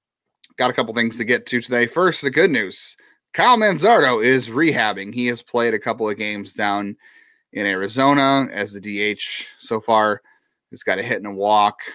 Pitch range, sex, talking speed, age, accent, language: 100-135 Hz, male, 190 wpm, 30-49, American, English